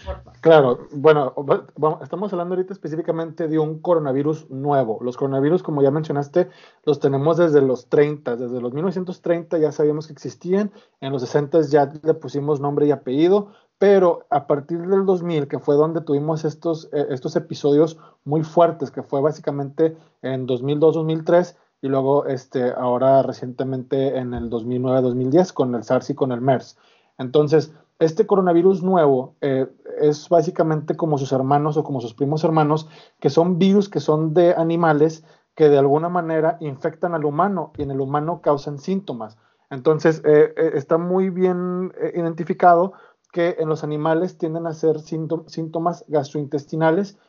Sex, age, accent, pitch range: male, 40-59, Mexican, 140-170 Hz